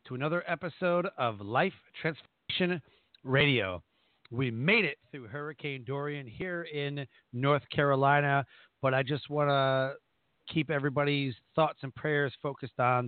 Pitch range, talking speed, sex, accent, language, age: 120-155 Hz, 135 wpm, male, American, English, 40-59